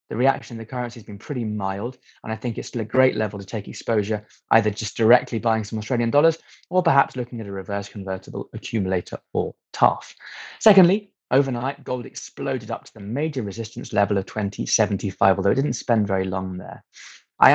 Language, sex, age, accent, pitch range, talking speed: English, male, 20-39, British, 100-125 Hz, 195 wpm